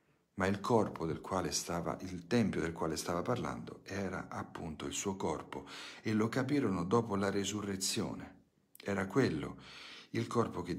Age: 50-69